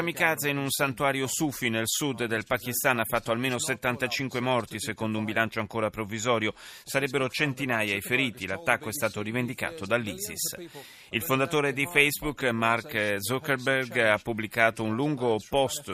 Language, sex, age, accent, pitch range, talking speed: Italian, male, 30-49, native, 110-150 Hz, 145 wpm